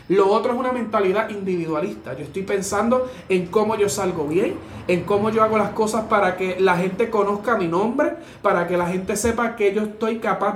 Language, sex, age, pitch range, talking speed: Spanish, male, 30-49, 190-245 Hz, 205 wpm